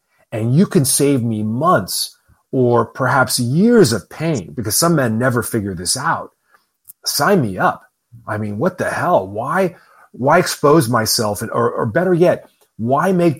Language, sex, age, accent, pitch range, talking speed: English, male, 30-49, American, 105-135 Hz, 160 wpm